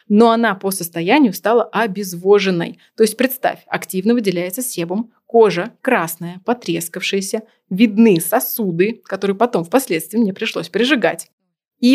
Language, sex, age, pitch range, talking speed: Russian, female, 20-39, 180-230 Hz, 120 wpm